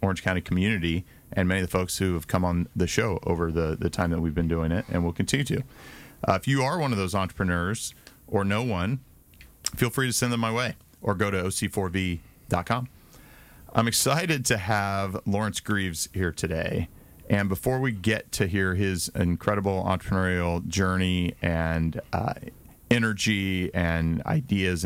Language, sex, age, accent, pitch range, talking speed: English, male, 30-49, American, 85-110 Hz, 175 wpm